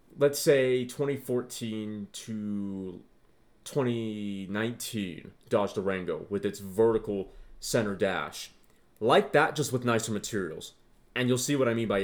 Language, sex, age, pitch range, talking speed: English, male, 30-49, 110-150 Hz, 125 wpm